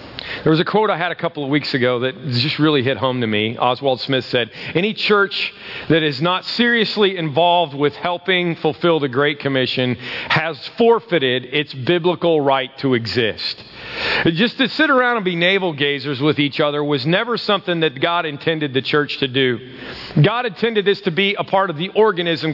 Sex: male